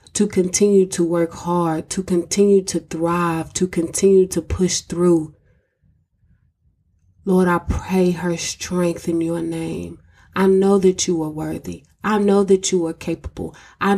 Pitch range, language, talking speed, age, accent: 165-195 Hz, English, 150 wpm, 20-39, American